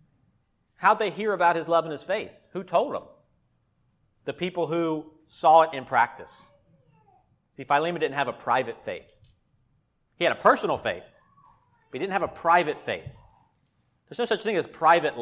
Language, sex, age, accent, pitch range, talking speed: English, male, 40-59, American, 135-170 Hz, 175 wpm